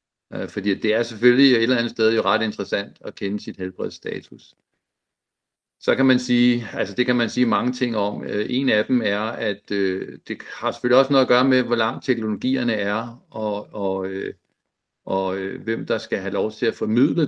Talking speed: 195 wpm